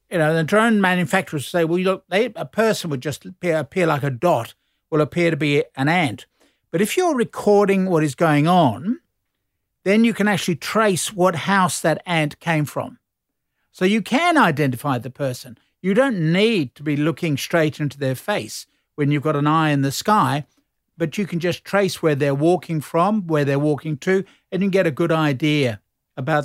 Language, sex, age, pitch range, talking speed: English, male, 50-69, 145-180 Hz, 195 wpm